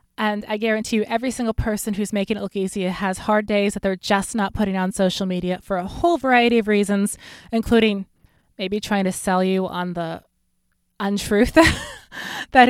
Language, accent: English, American